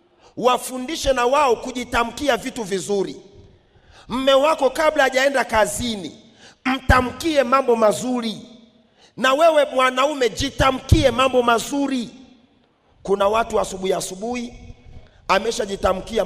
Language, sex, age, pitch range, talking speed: Swahili, male, 40-59, 200-270 Hz, 90 wpm